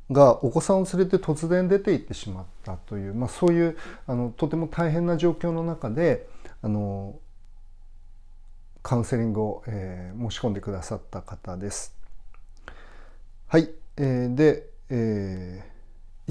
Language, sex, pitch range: Japanese, male, 95-155 Hz